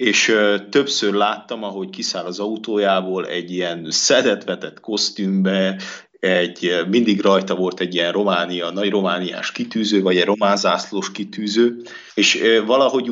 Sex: male